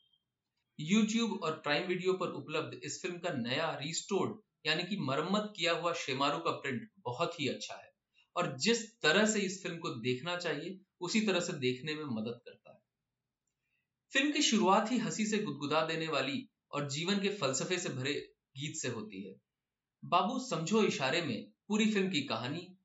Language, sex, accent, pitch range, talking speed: Hindi, male, native, 135-200 Hz, 175 wpm